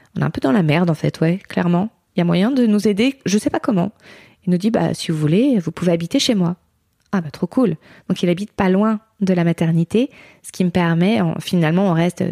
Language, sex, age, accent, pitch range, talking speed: French, female, 20-39, French, 165-195 Hz, 270 wpm